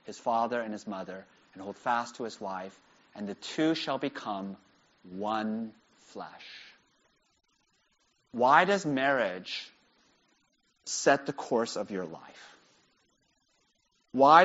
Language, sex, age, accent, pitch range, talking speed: English, male, 30-49, American, 120-165 Hz, 115 wpm